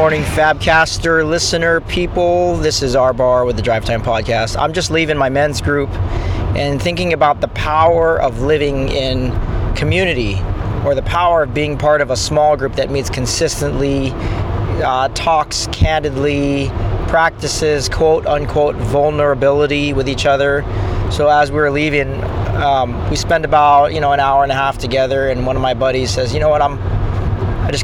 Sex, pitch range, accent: male, 105-150 Hz, American